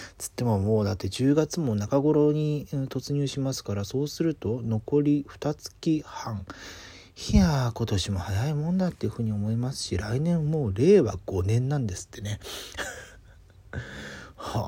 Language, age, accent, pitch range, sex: Japanese, 40-59, native, 100-140 Hz, male